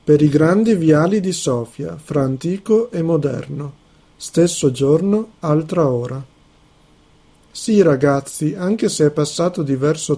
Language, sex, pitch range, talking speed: Italian, male, 140-170 Hz, 125 wpm